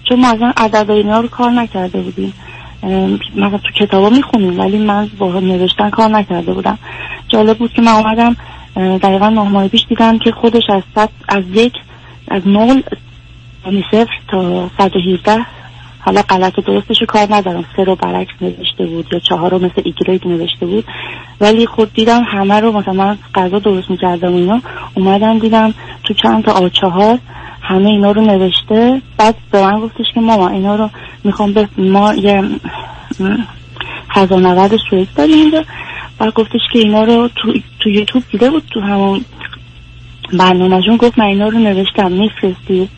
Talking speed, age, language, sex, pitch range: 155 wpm, 30-49, Persian, female, 180-220 Hz